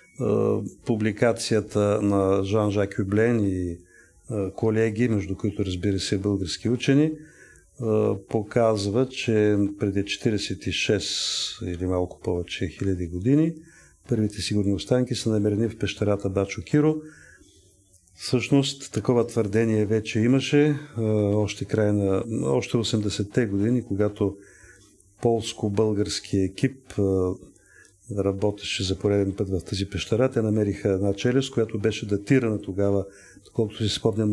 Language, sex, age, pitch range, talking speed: Bulgarian, male, 40-59, 100-120 Hz, 110 wpm